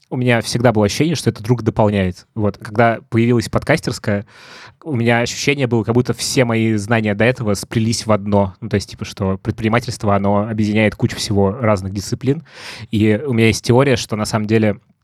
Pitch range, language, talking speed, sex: 105-120 Hz, Russian, 190 wpm, male